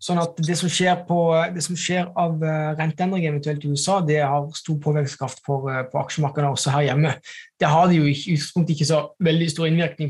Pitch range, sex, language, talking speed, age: 150-175 Hz, male, English, 200 wpm, 20-39